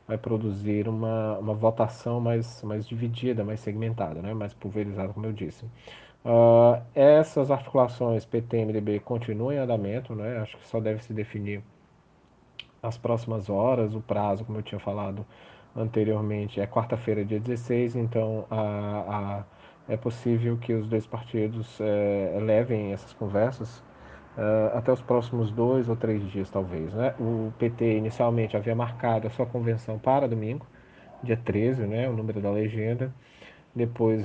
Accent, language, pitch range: Brazilian, Portuguese, 110-125 Hz